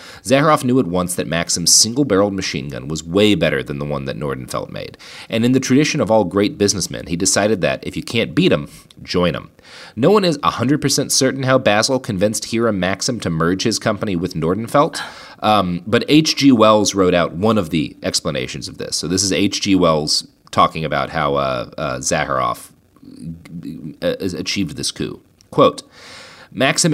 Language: English